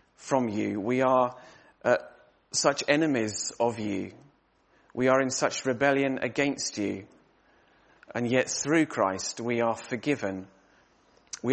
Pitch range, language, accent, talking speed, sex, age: 115-145 Hz, English, British, 125 wpm, male, 30-49